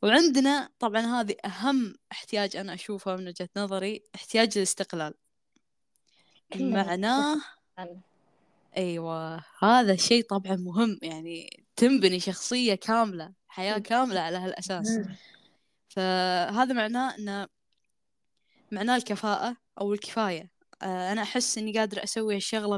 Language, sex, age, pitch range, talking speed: Arabic, female, 10-29, 185-230 Hz, 105 wpm